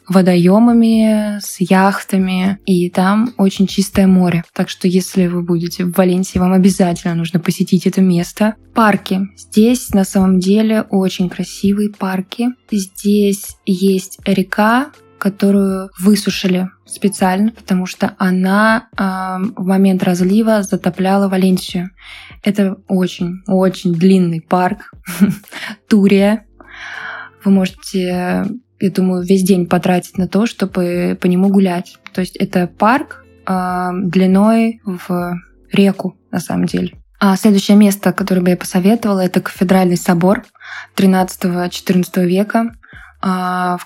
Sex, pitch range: female, 180-200 Hz